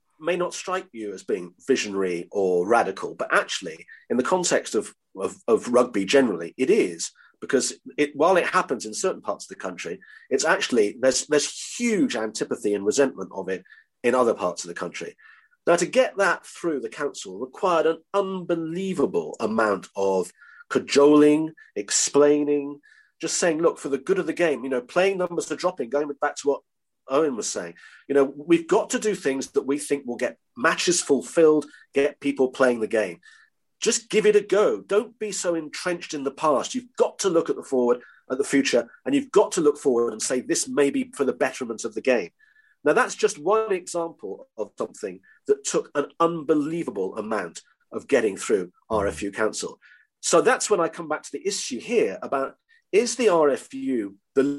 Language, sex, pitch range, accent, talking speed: English, male, 140-235 Hz, British, 190 wpm